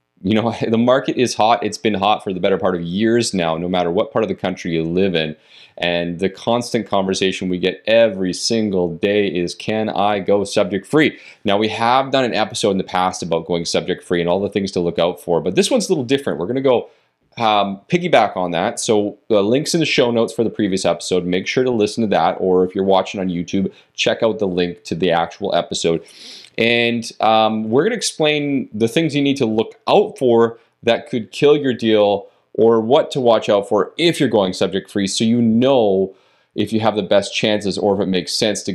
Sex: male